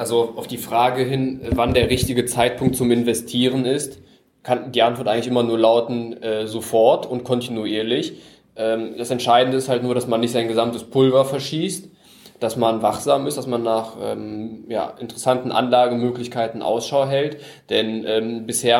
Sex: male